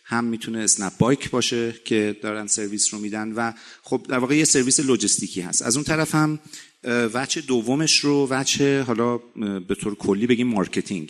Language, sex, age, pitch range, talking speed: Persian, male, 40-59, 105-125 Hz, 175 wpm